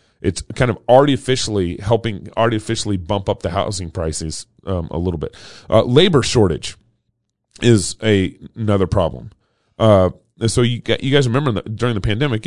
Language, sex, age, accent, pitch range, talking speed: English, male, 30-49, American, 100-125 Hz, 160 wpm